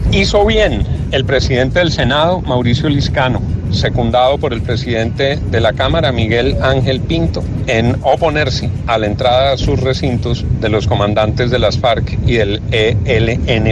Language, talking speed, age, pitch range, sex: Spanish, 155 wpm, 40-59, 105-125 Hz, male